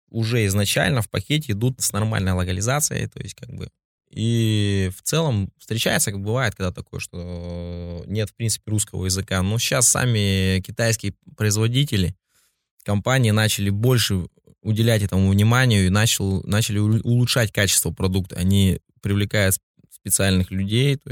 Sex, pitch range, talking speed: male, 90-115 Hz, 135 wpm